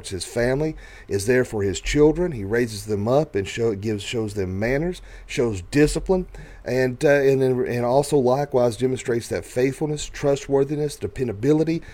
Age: 40-59